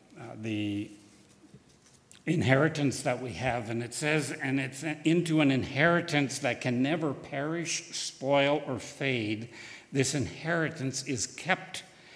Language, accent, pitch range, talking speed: English, American, 125-150 Hz, 125 wpm